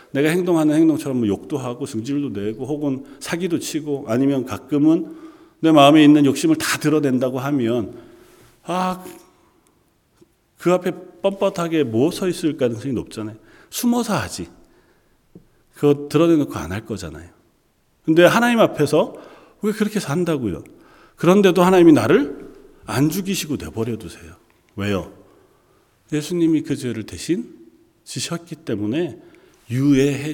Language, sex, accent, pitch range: Korean, male, native, 105-160 Hz